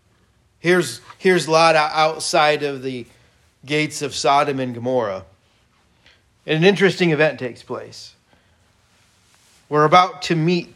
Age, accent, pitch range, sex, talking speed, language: 40-59, American, 120-160 Hz, male, 115 wpm, English